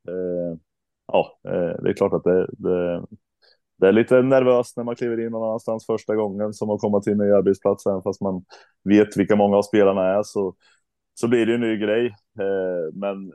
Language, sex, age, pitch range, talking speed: Swedish, male, 20-39, 85-105 Hz, 200 wpm